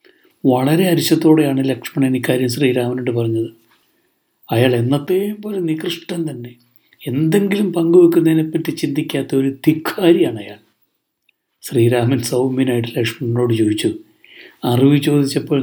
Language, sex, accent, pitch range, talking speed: Malayalam, male, native, 115-150 Hz, 90 wpm